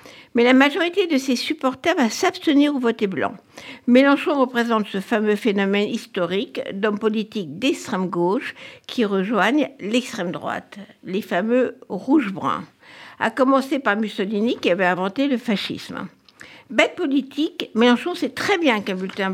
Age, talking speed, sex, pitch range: 60-79, 135 wpm, female, 200-280 Hz